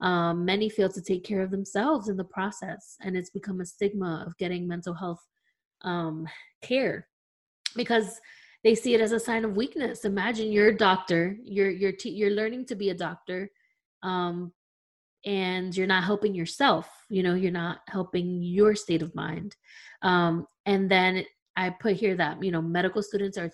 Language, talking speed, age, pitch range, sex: English, 180 wpm, 20-39, 175-210 Hz, female